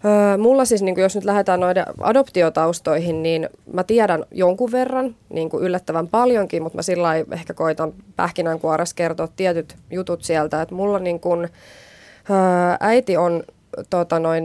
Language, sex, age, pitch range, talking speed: Finnish, female, 20-39, 160-195 Hz, 140 wpm